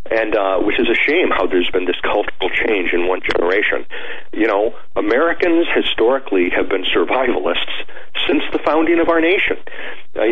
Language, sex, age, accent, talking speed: English, male, 50-69, American, 170 wpm